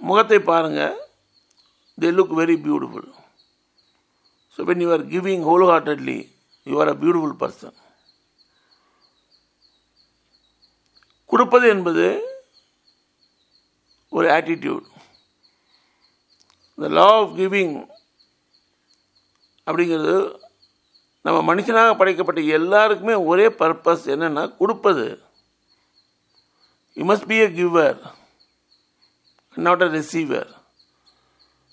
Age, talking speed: 60-79, 110 wpm